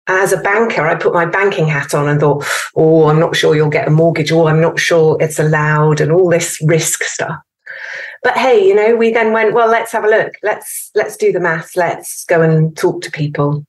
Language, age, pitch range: English, 30-49, 155-205 Hz